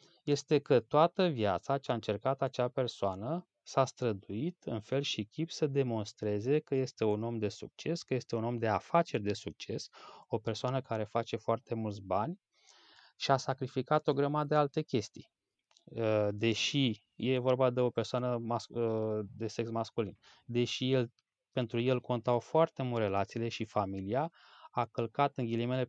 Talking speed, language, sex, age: 160 wpm, Romanian, male, 20-39